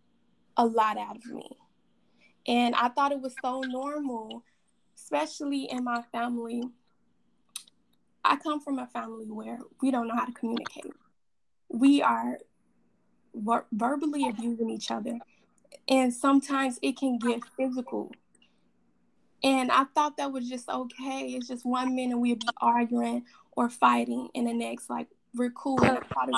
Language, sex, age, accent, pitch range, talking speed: English, female, 10-29, American, 235-270 Hz, 150 wpm